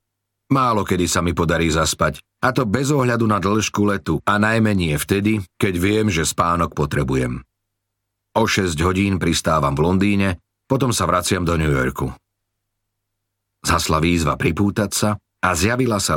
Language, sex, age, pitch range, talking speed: Slovak, male, 40-59, 85-100 Hz, 150 wpm